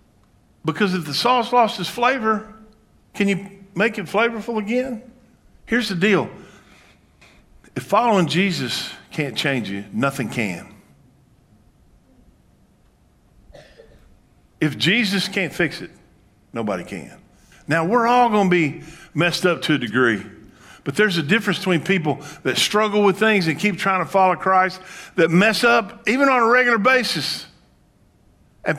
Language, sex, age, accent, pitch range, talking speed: English, male, 50-69, American, 165-220 Hz, 140 wpm